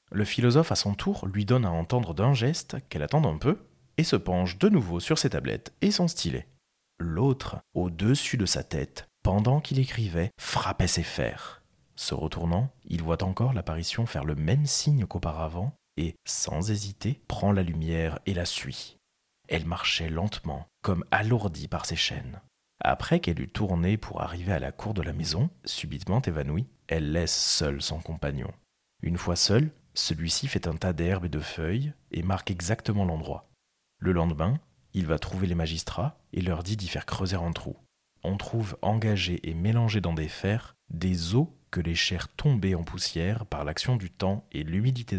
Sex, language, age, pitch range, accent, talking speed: male, French, 30-49, 85-115 Hz, French, 180 wpm